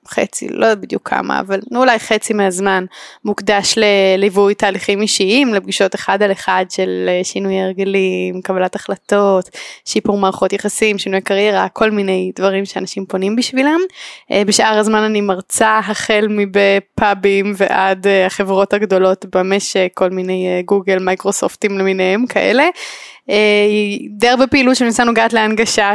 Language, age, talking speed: Hebrew, 20-39, 125 wpm